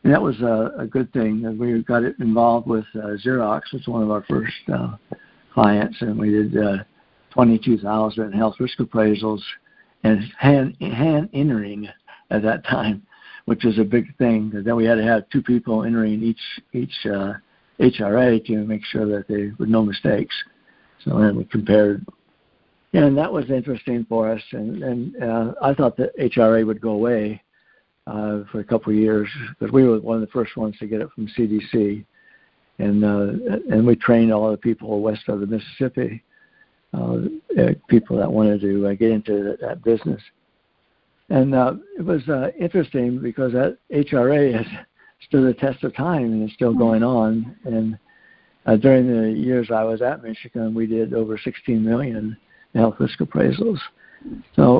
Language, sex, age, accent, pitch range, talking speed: English, male, 60-79, American, 110-125 Hz, 175 wpm